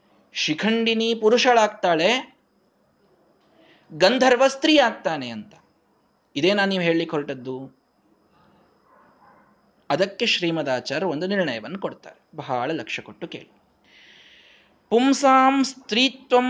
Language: Kannada